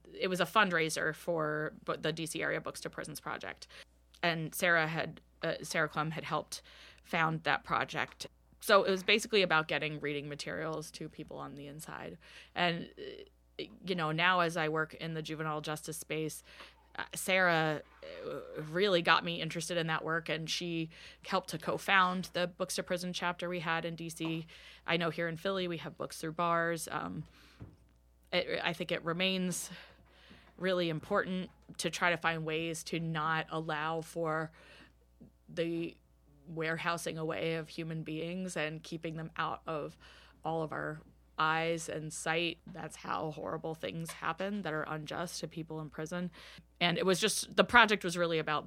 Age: 20-39